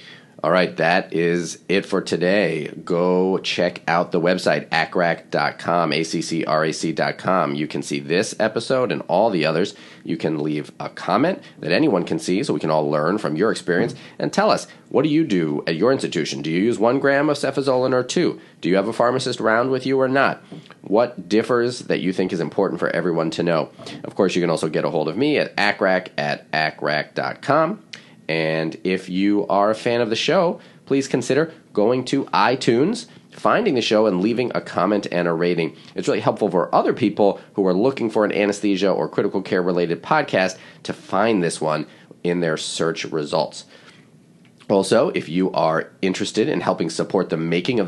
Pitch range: 80-110 Hz